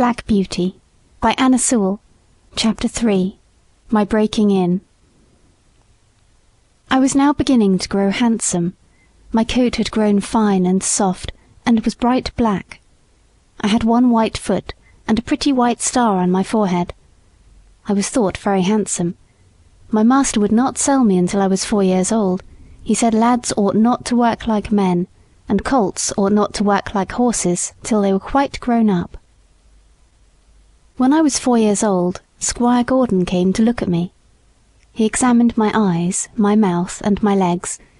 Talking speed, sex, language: 165 wpm, female, English